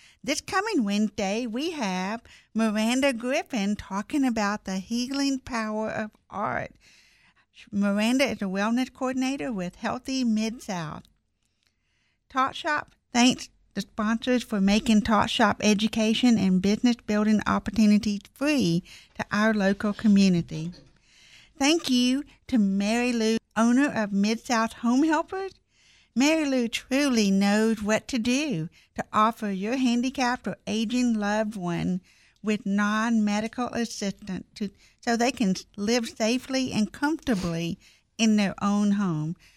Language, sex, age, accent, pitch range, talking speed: English, female, 60-79, American, 205-255 Hz, 125 wpm